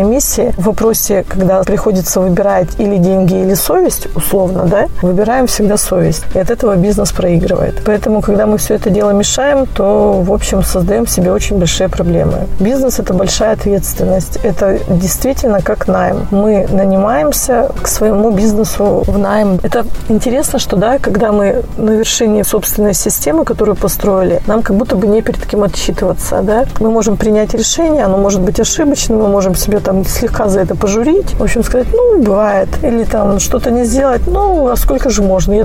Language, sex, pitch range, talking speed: Russian, female, 195-230 Hz, 175 wpm